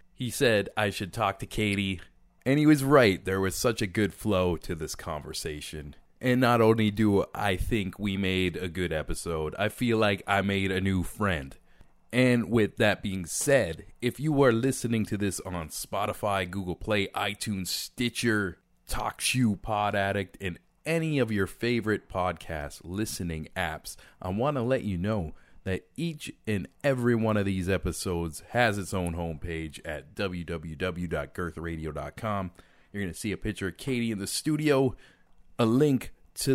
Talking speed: 165 wpm